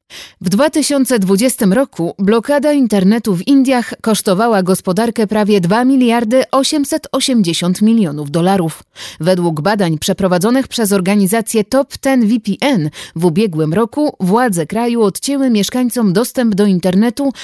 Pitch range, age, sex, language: 180-250 Hz, 30-49, female, Polish